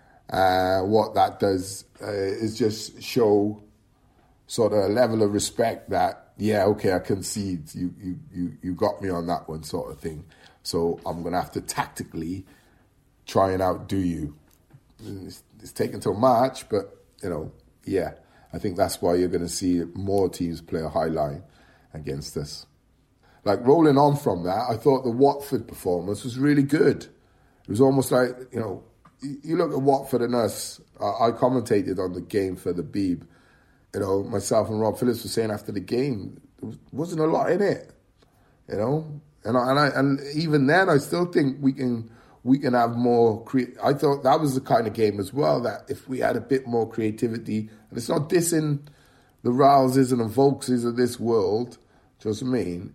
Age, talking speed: 30-49, 190 wpm